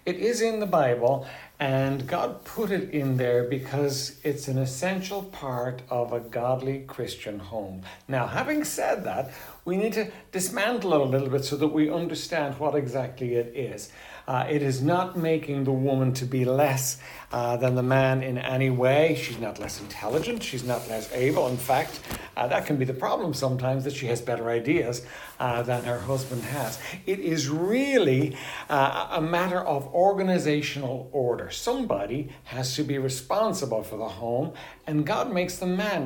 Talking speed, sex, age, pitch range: 180 wpm, male, 60-79, 130-165 Hz